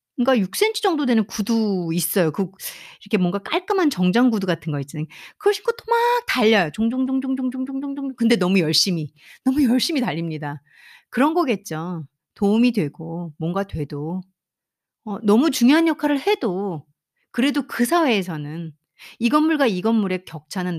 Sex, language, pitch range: female, Korean, 175-260 Hz